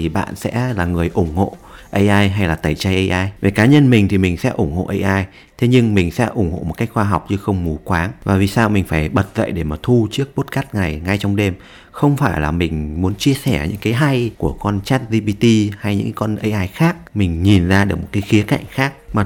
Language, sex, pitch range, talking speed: Vietnamese, male, 95-115 Hz, 255 wpm